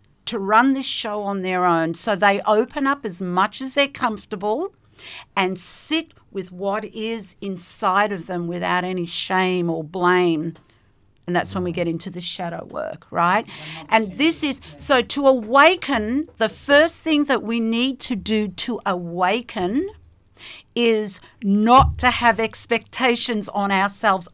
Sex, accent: female, Australian